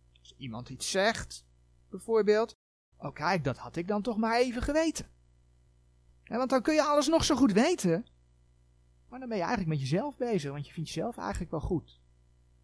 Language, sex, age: Dutch, male, 40-59